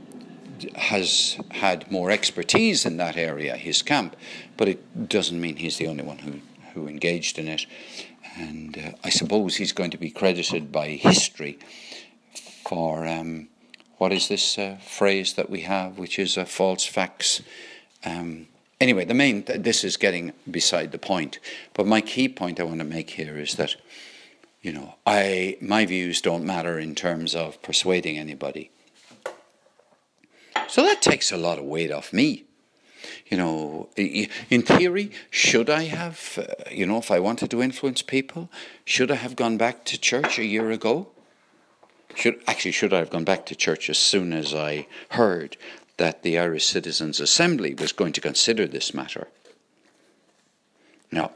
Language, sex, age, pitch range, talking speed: English, male, 60-79, 80-110 Hz, 170 wpm